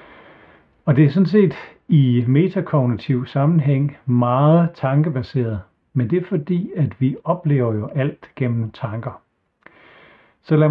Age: 60-79